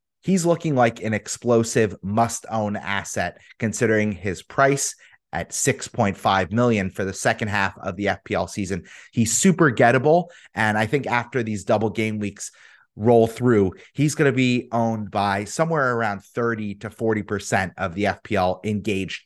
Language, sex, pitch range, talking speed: English, male, 105-135 Hz, 150 wpm